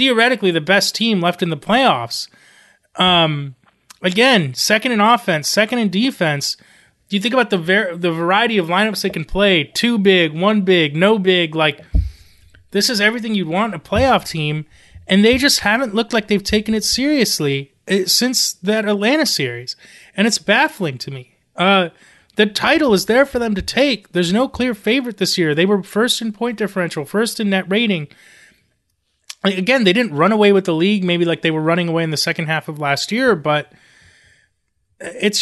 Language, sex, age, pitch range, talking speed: English, male, 30-49, 160-215 Hz, 185 wpm